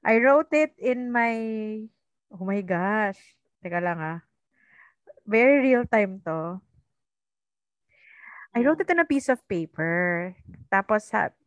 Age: 30-49